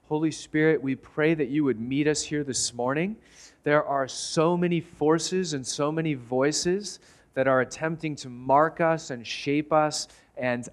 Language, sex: English, male